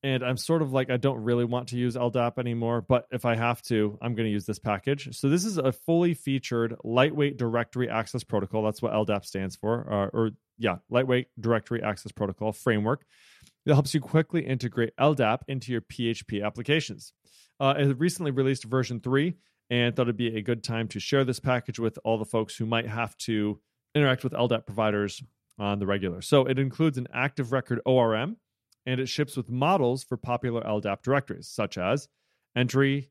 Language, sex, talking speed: English, male, 195 wpm